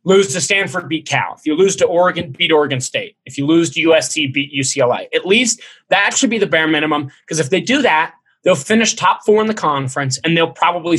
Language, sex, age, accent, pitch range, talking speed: English, male, 20-39, American, 150-205 Hz, 235 wpm